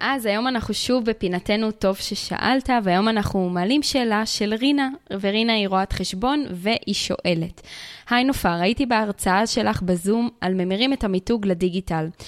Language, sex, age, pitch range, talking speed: Hebrew, female, 20-39, 190-245 Hz, 150 wpm